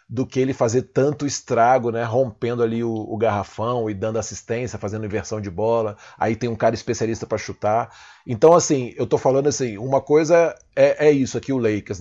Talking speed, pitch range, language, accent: 200 wpm, 110-135 Hz, Portuguese, Brazilian